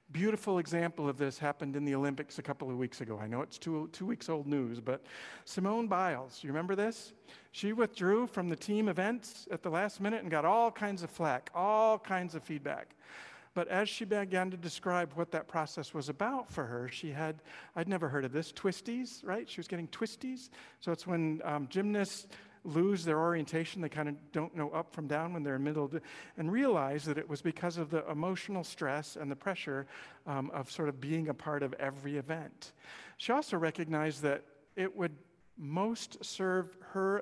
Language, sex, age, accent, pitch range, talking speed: English, male, 50-69, American, 145-190 Hz, 205 wpm